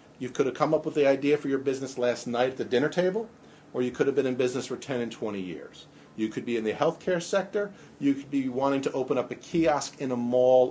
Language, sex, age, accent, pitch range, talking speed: English, male, 40-59, American, 110-150 Hz, 270 wpm